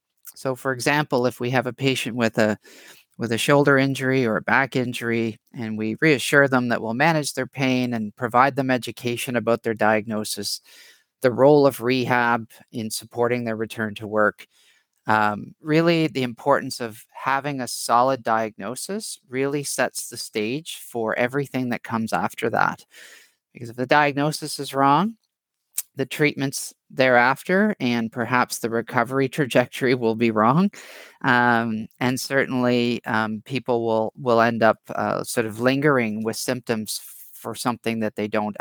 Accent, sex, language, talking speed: American, male, English, 155 wpm